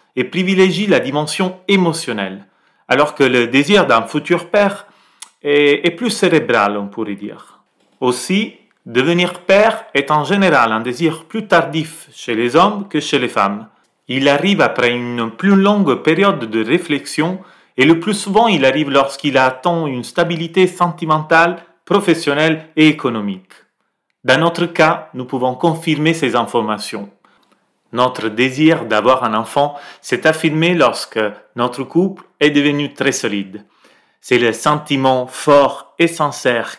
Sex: male